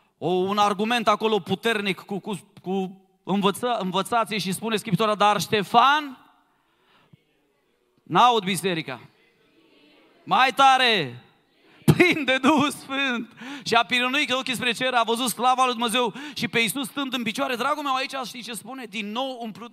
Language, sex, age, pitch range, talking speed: Romanian, male, 30-49, 215-285 Hz, 150 wpm